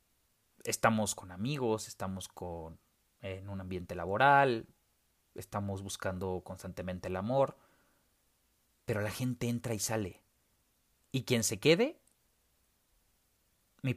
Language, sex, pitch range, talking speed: Spanish, male, 95-125 Hz, 105 wpm